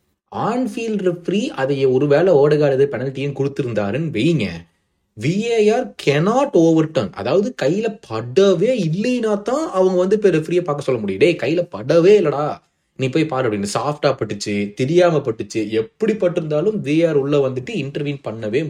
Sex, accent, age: male, native, 30-49